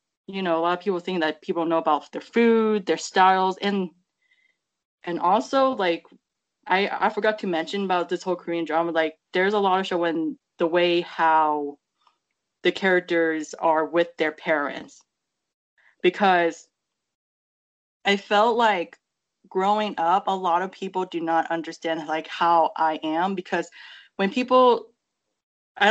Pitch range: 165-200 Hz